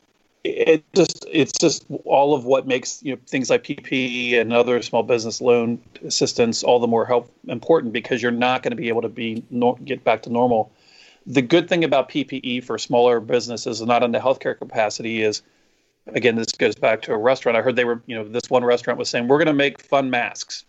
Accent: American